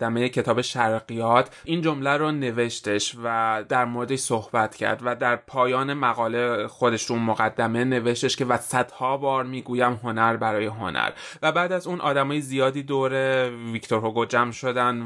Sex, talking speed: male, 155 wpm